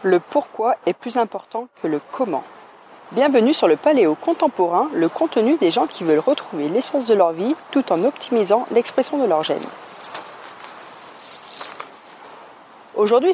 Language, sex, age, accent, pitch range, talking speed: French, female, 30-49, French, 180-260 Hz, 145 wpm